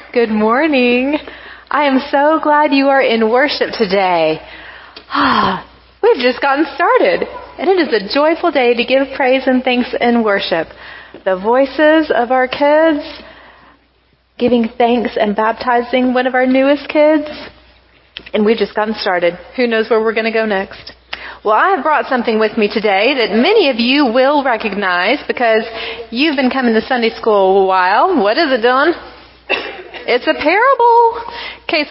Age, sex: 30-49, female